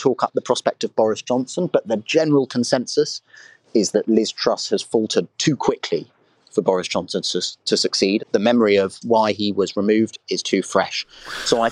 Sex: male